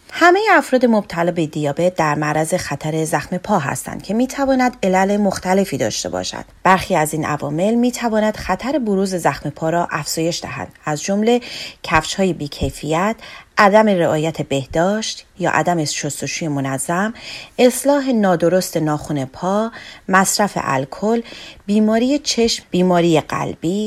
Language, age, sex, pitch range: Persian, 30-49, female, 160-220 Hz